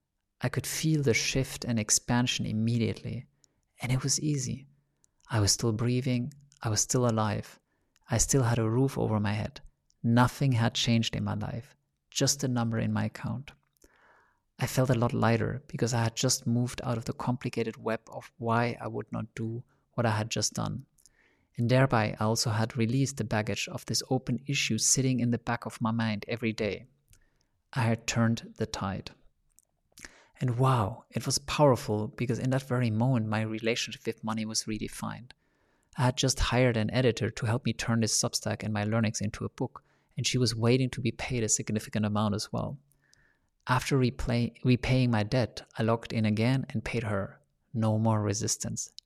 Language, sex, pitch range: English, male, 110-130 Hz